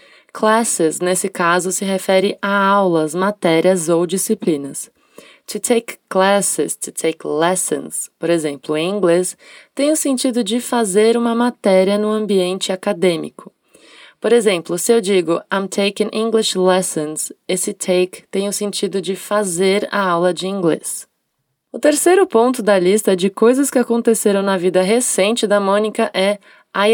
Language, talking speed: Portuguese, 145 wpm